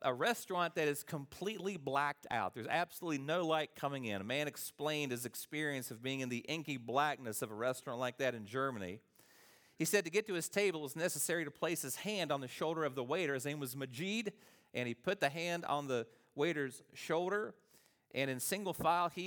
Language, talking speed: English, 215 wpm